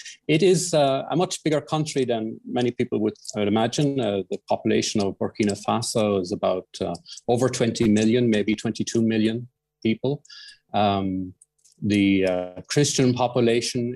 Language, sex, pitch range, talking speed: English, male, 105-130 Hz, 145 wpm